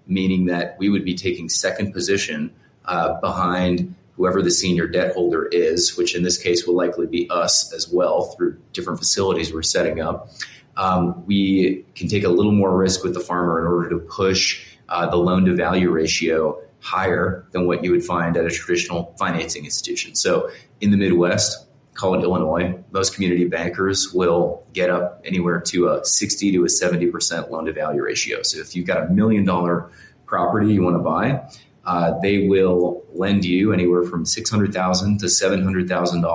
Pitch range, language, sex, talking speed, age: 90-100 Hz, English, male, 180 wpm, 30-49